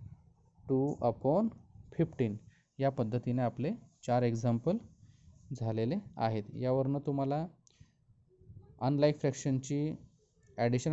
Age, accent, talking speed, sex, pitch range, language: 20-39, native, 80 wpm, male, 120-140 Hz, Marathi